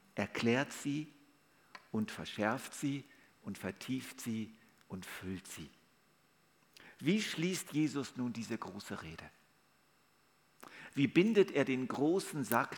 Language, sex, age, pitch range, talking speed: German, male, 50-69, 110-145 Hz, 115 wpm